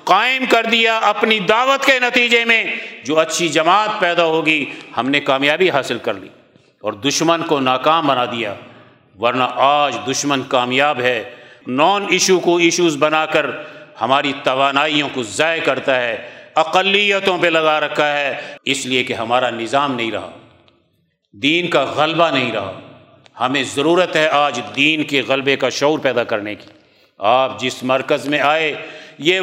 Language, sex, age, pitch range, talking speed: Urdu, male, 50-69, 145-215 Hz, 155 wpm